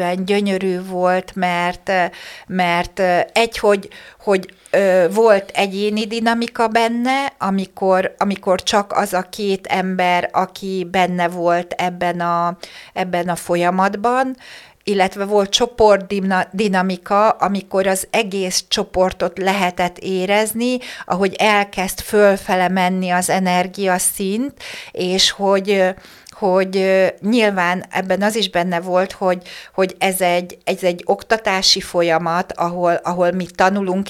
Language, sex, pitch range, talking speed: Hungarian, female, 175-195 Hz, 110 wpm